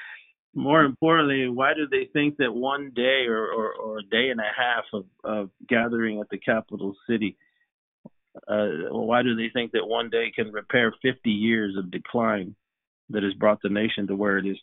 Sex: male